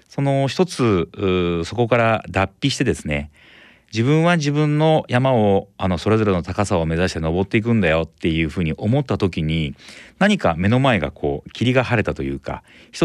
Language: Japanese